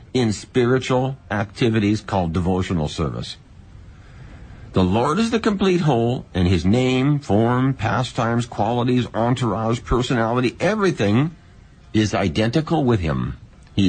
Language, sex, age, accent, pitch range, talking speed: English, male, 60-79, American, 95-135 Hz, 110 wpm